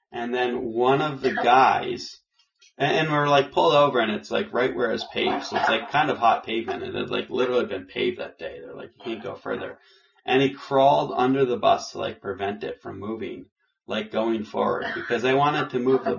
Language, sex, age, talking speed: English, male, 20-39, 235 wpm